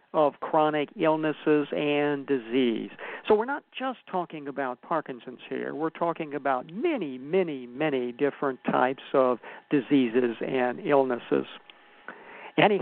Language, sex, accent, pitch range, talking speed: English, male, American, 135-175 Hz, 120 wpm